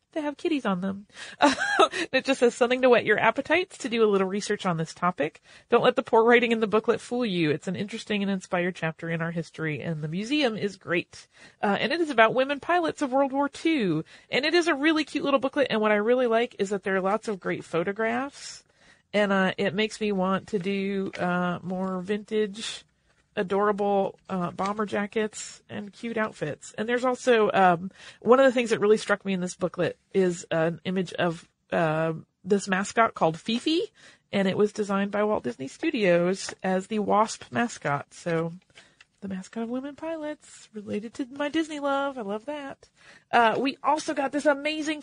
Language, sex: English, female